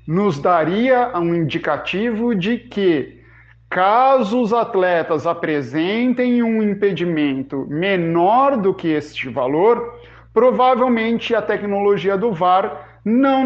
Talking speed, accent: 105 wpm, Brazilian